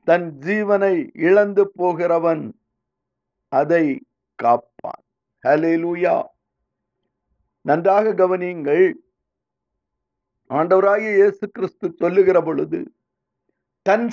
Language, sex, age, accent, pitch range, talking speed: Tamil, male, 50-69, native, 190-235 Hz, 50 wpm